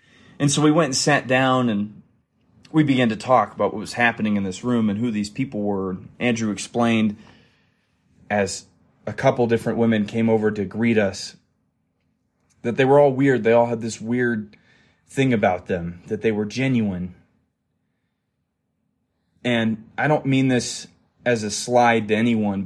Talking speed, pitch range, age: 165 wpm, 105-120 Hz, 20-39